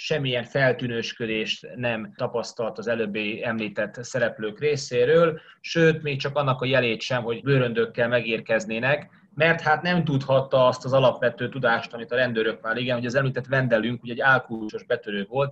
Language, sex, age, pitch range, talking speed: Hungarian, male, 30-49, 115-140 Hz, 160 wpm